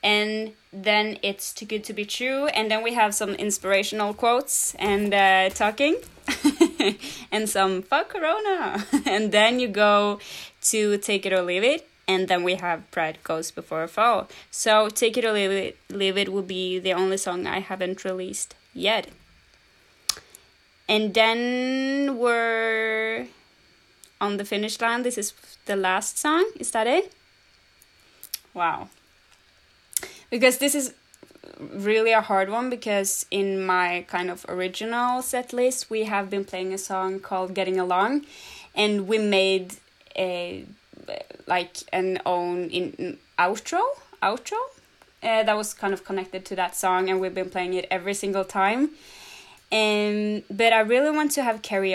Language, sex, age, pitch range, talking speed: Danish, female, 20-39, 190-230 Hz, 155 wpm